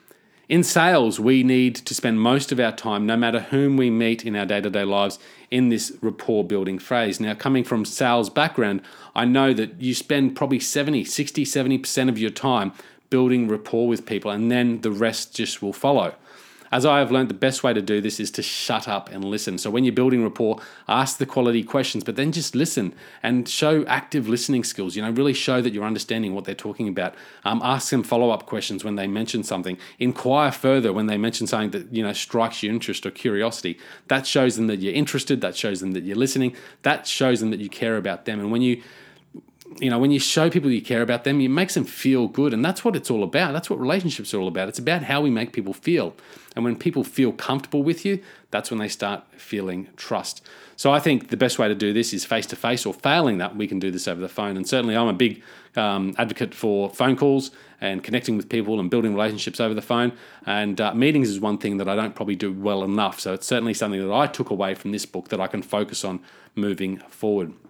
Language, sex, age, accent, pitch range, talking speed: English, male, 30-49, Australian, 105-130 Hz, 235 wpm